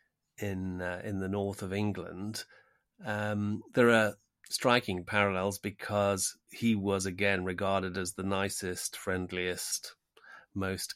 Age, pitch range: 30-49, 95-110 Hz